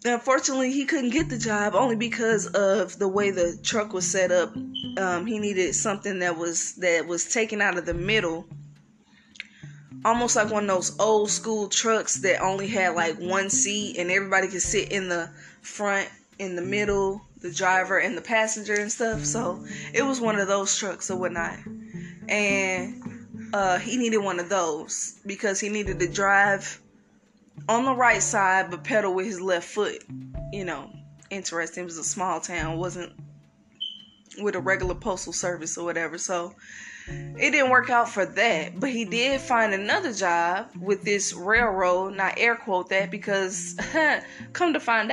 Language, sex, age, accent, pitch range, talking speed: English, female, 20-39, American, 180-220 Hz, 175 wpm